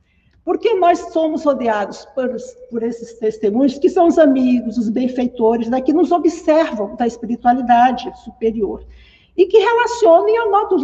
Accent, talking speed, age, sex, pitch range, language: Brazilian, 140 wpm, 60-79, female, 240-335 Hz, Portuguese